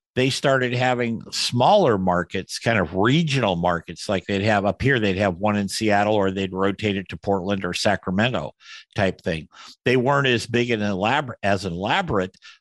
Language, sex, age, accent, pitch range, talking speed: English, male, 50-69, American, 95-120 Hz, 175 wpm